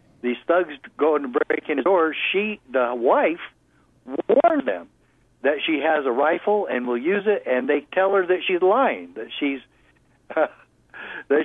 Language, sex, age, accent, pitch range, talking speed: English, male, 60-79, American, 125-180 Hz, 170 wpm